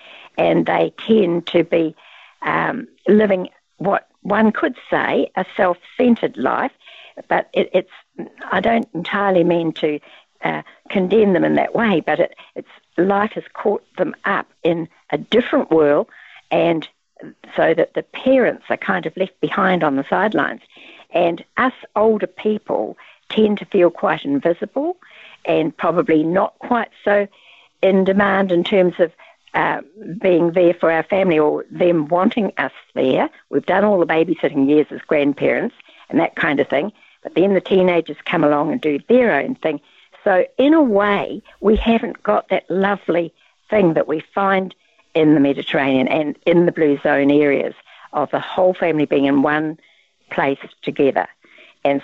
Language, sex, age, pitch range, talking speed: English, female, 60-79, 155-205 Hz, 160 wpm